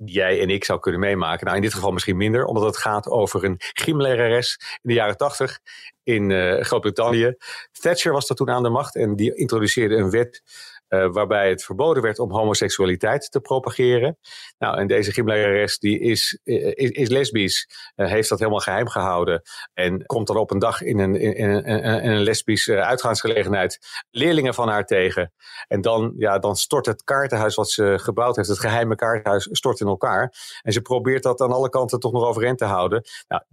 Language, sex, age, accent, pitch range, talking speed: English, male, 40-59, Dutch, 105-125 Hz, 200 wpm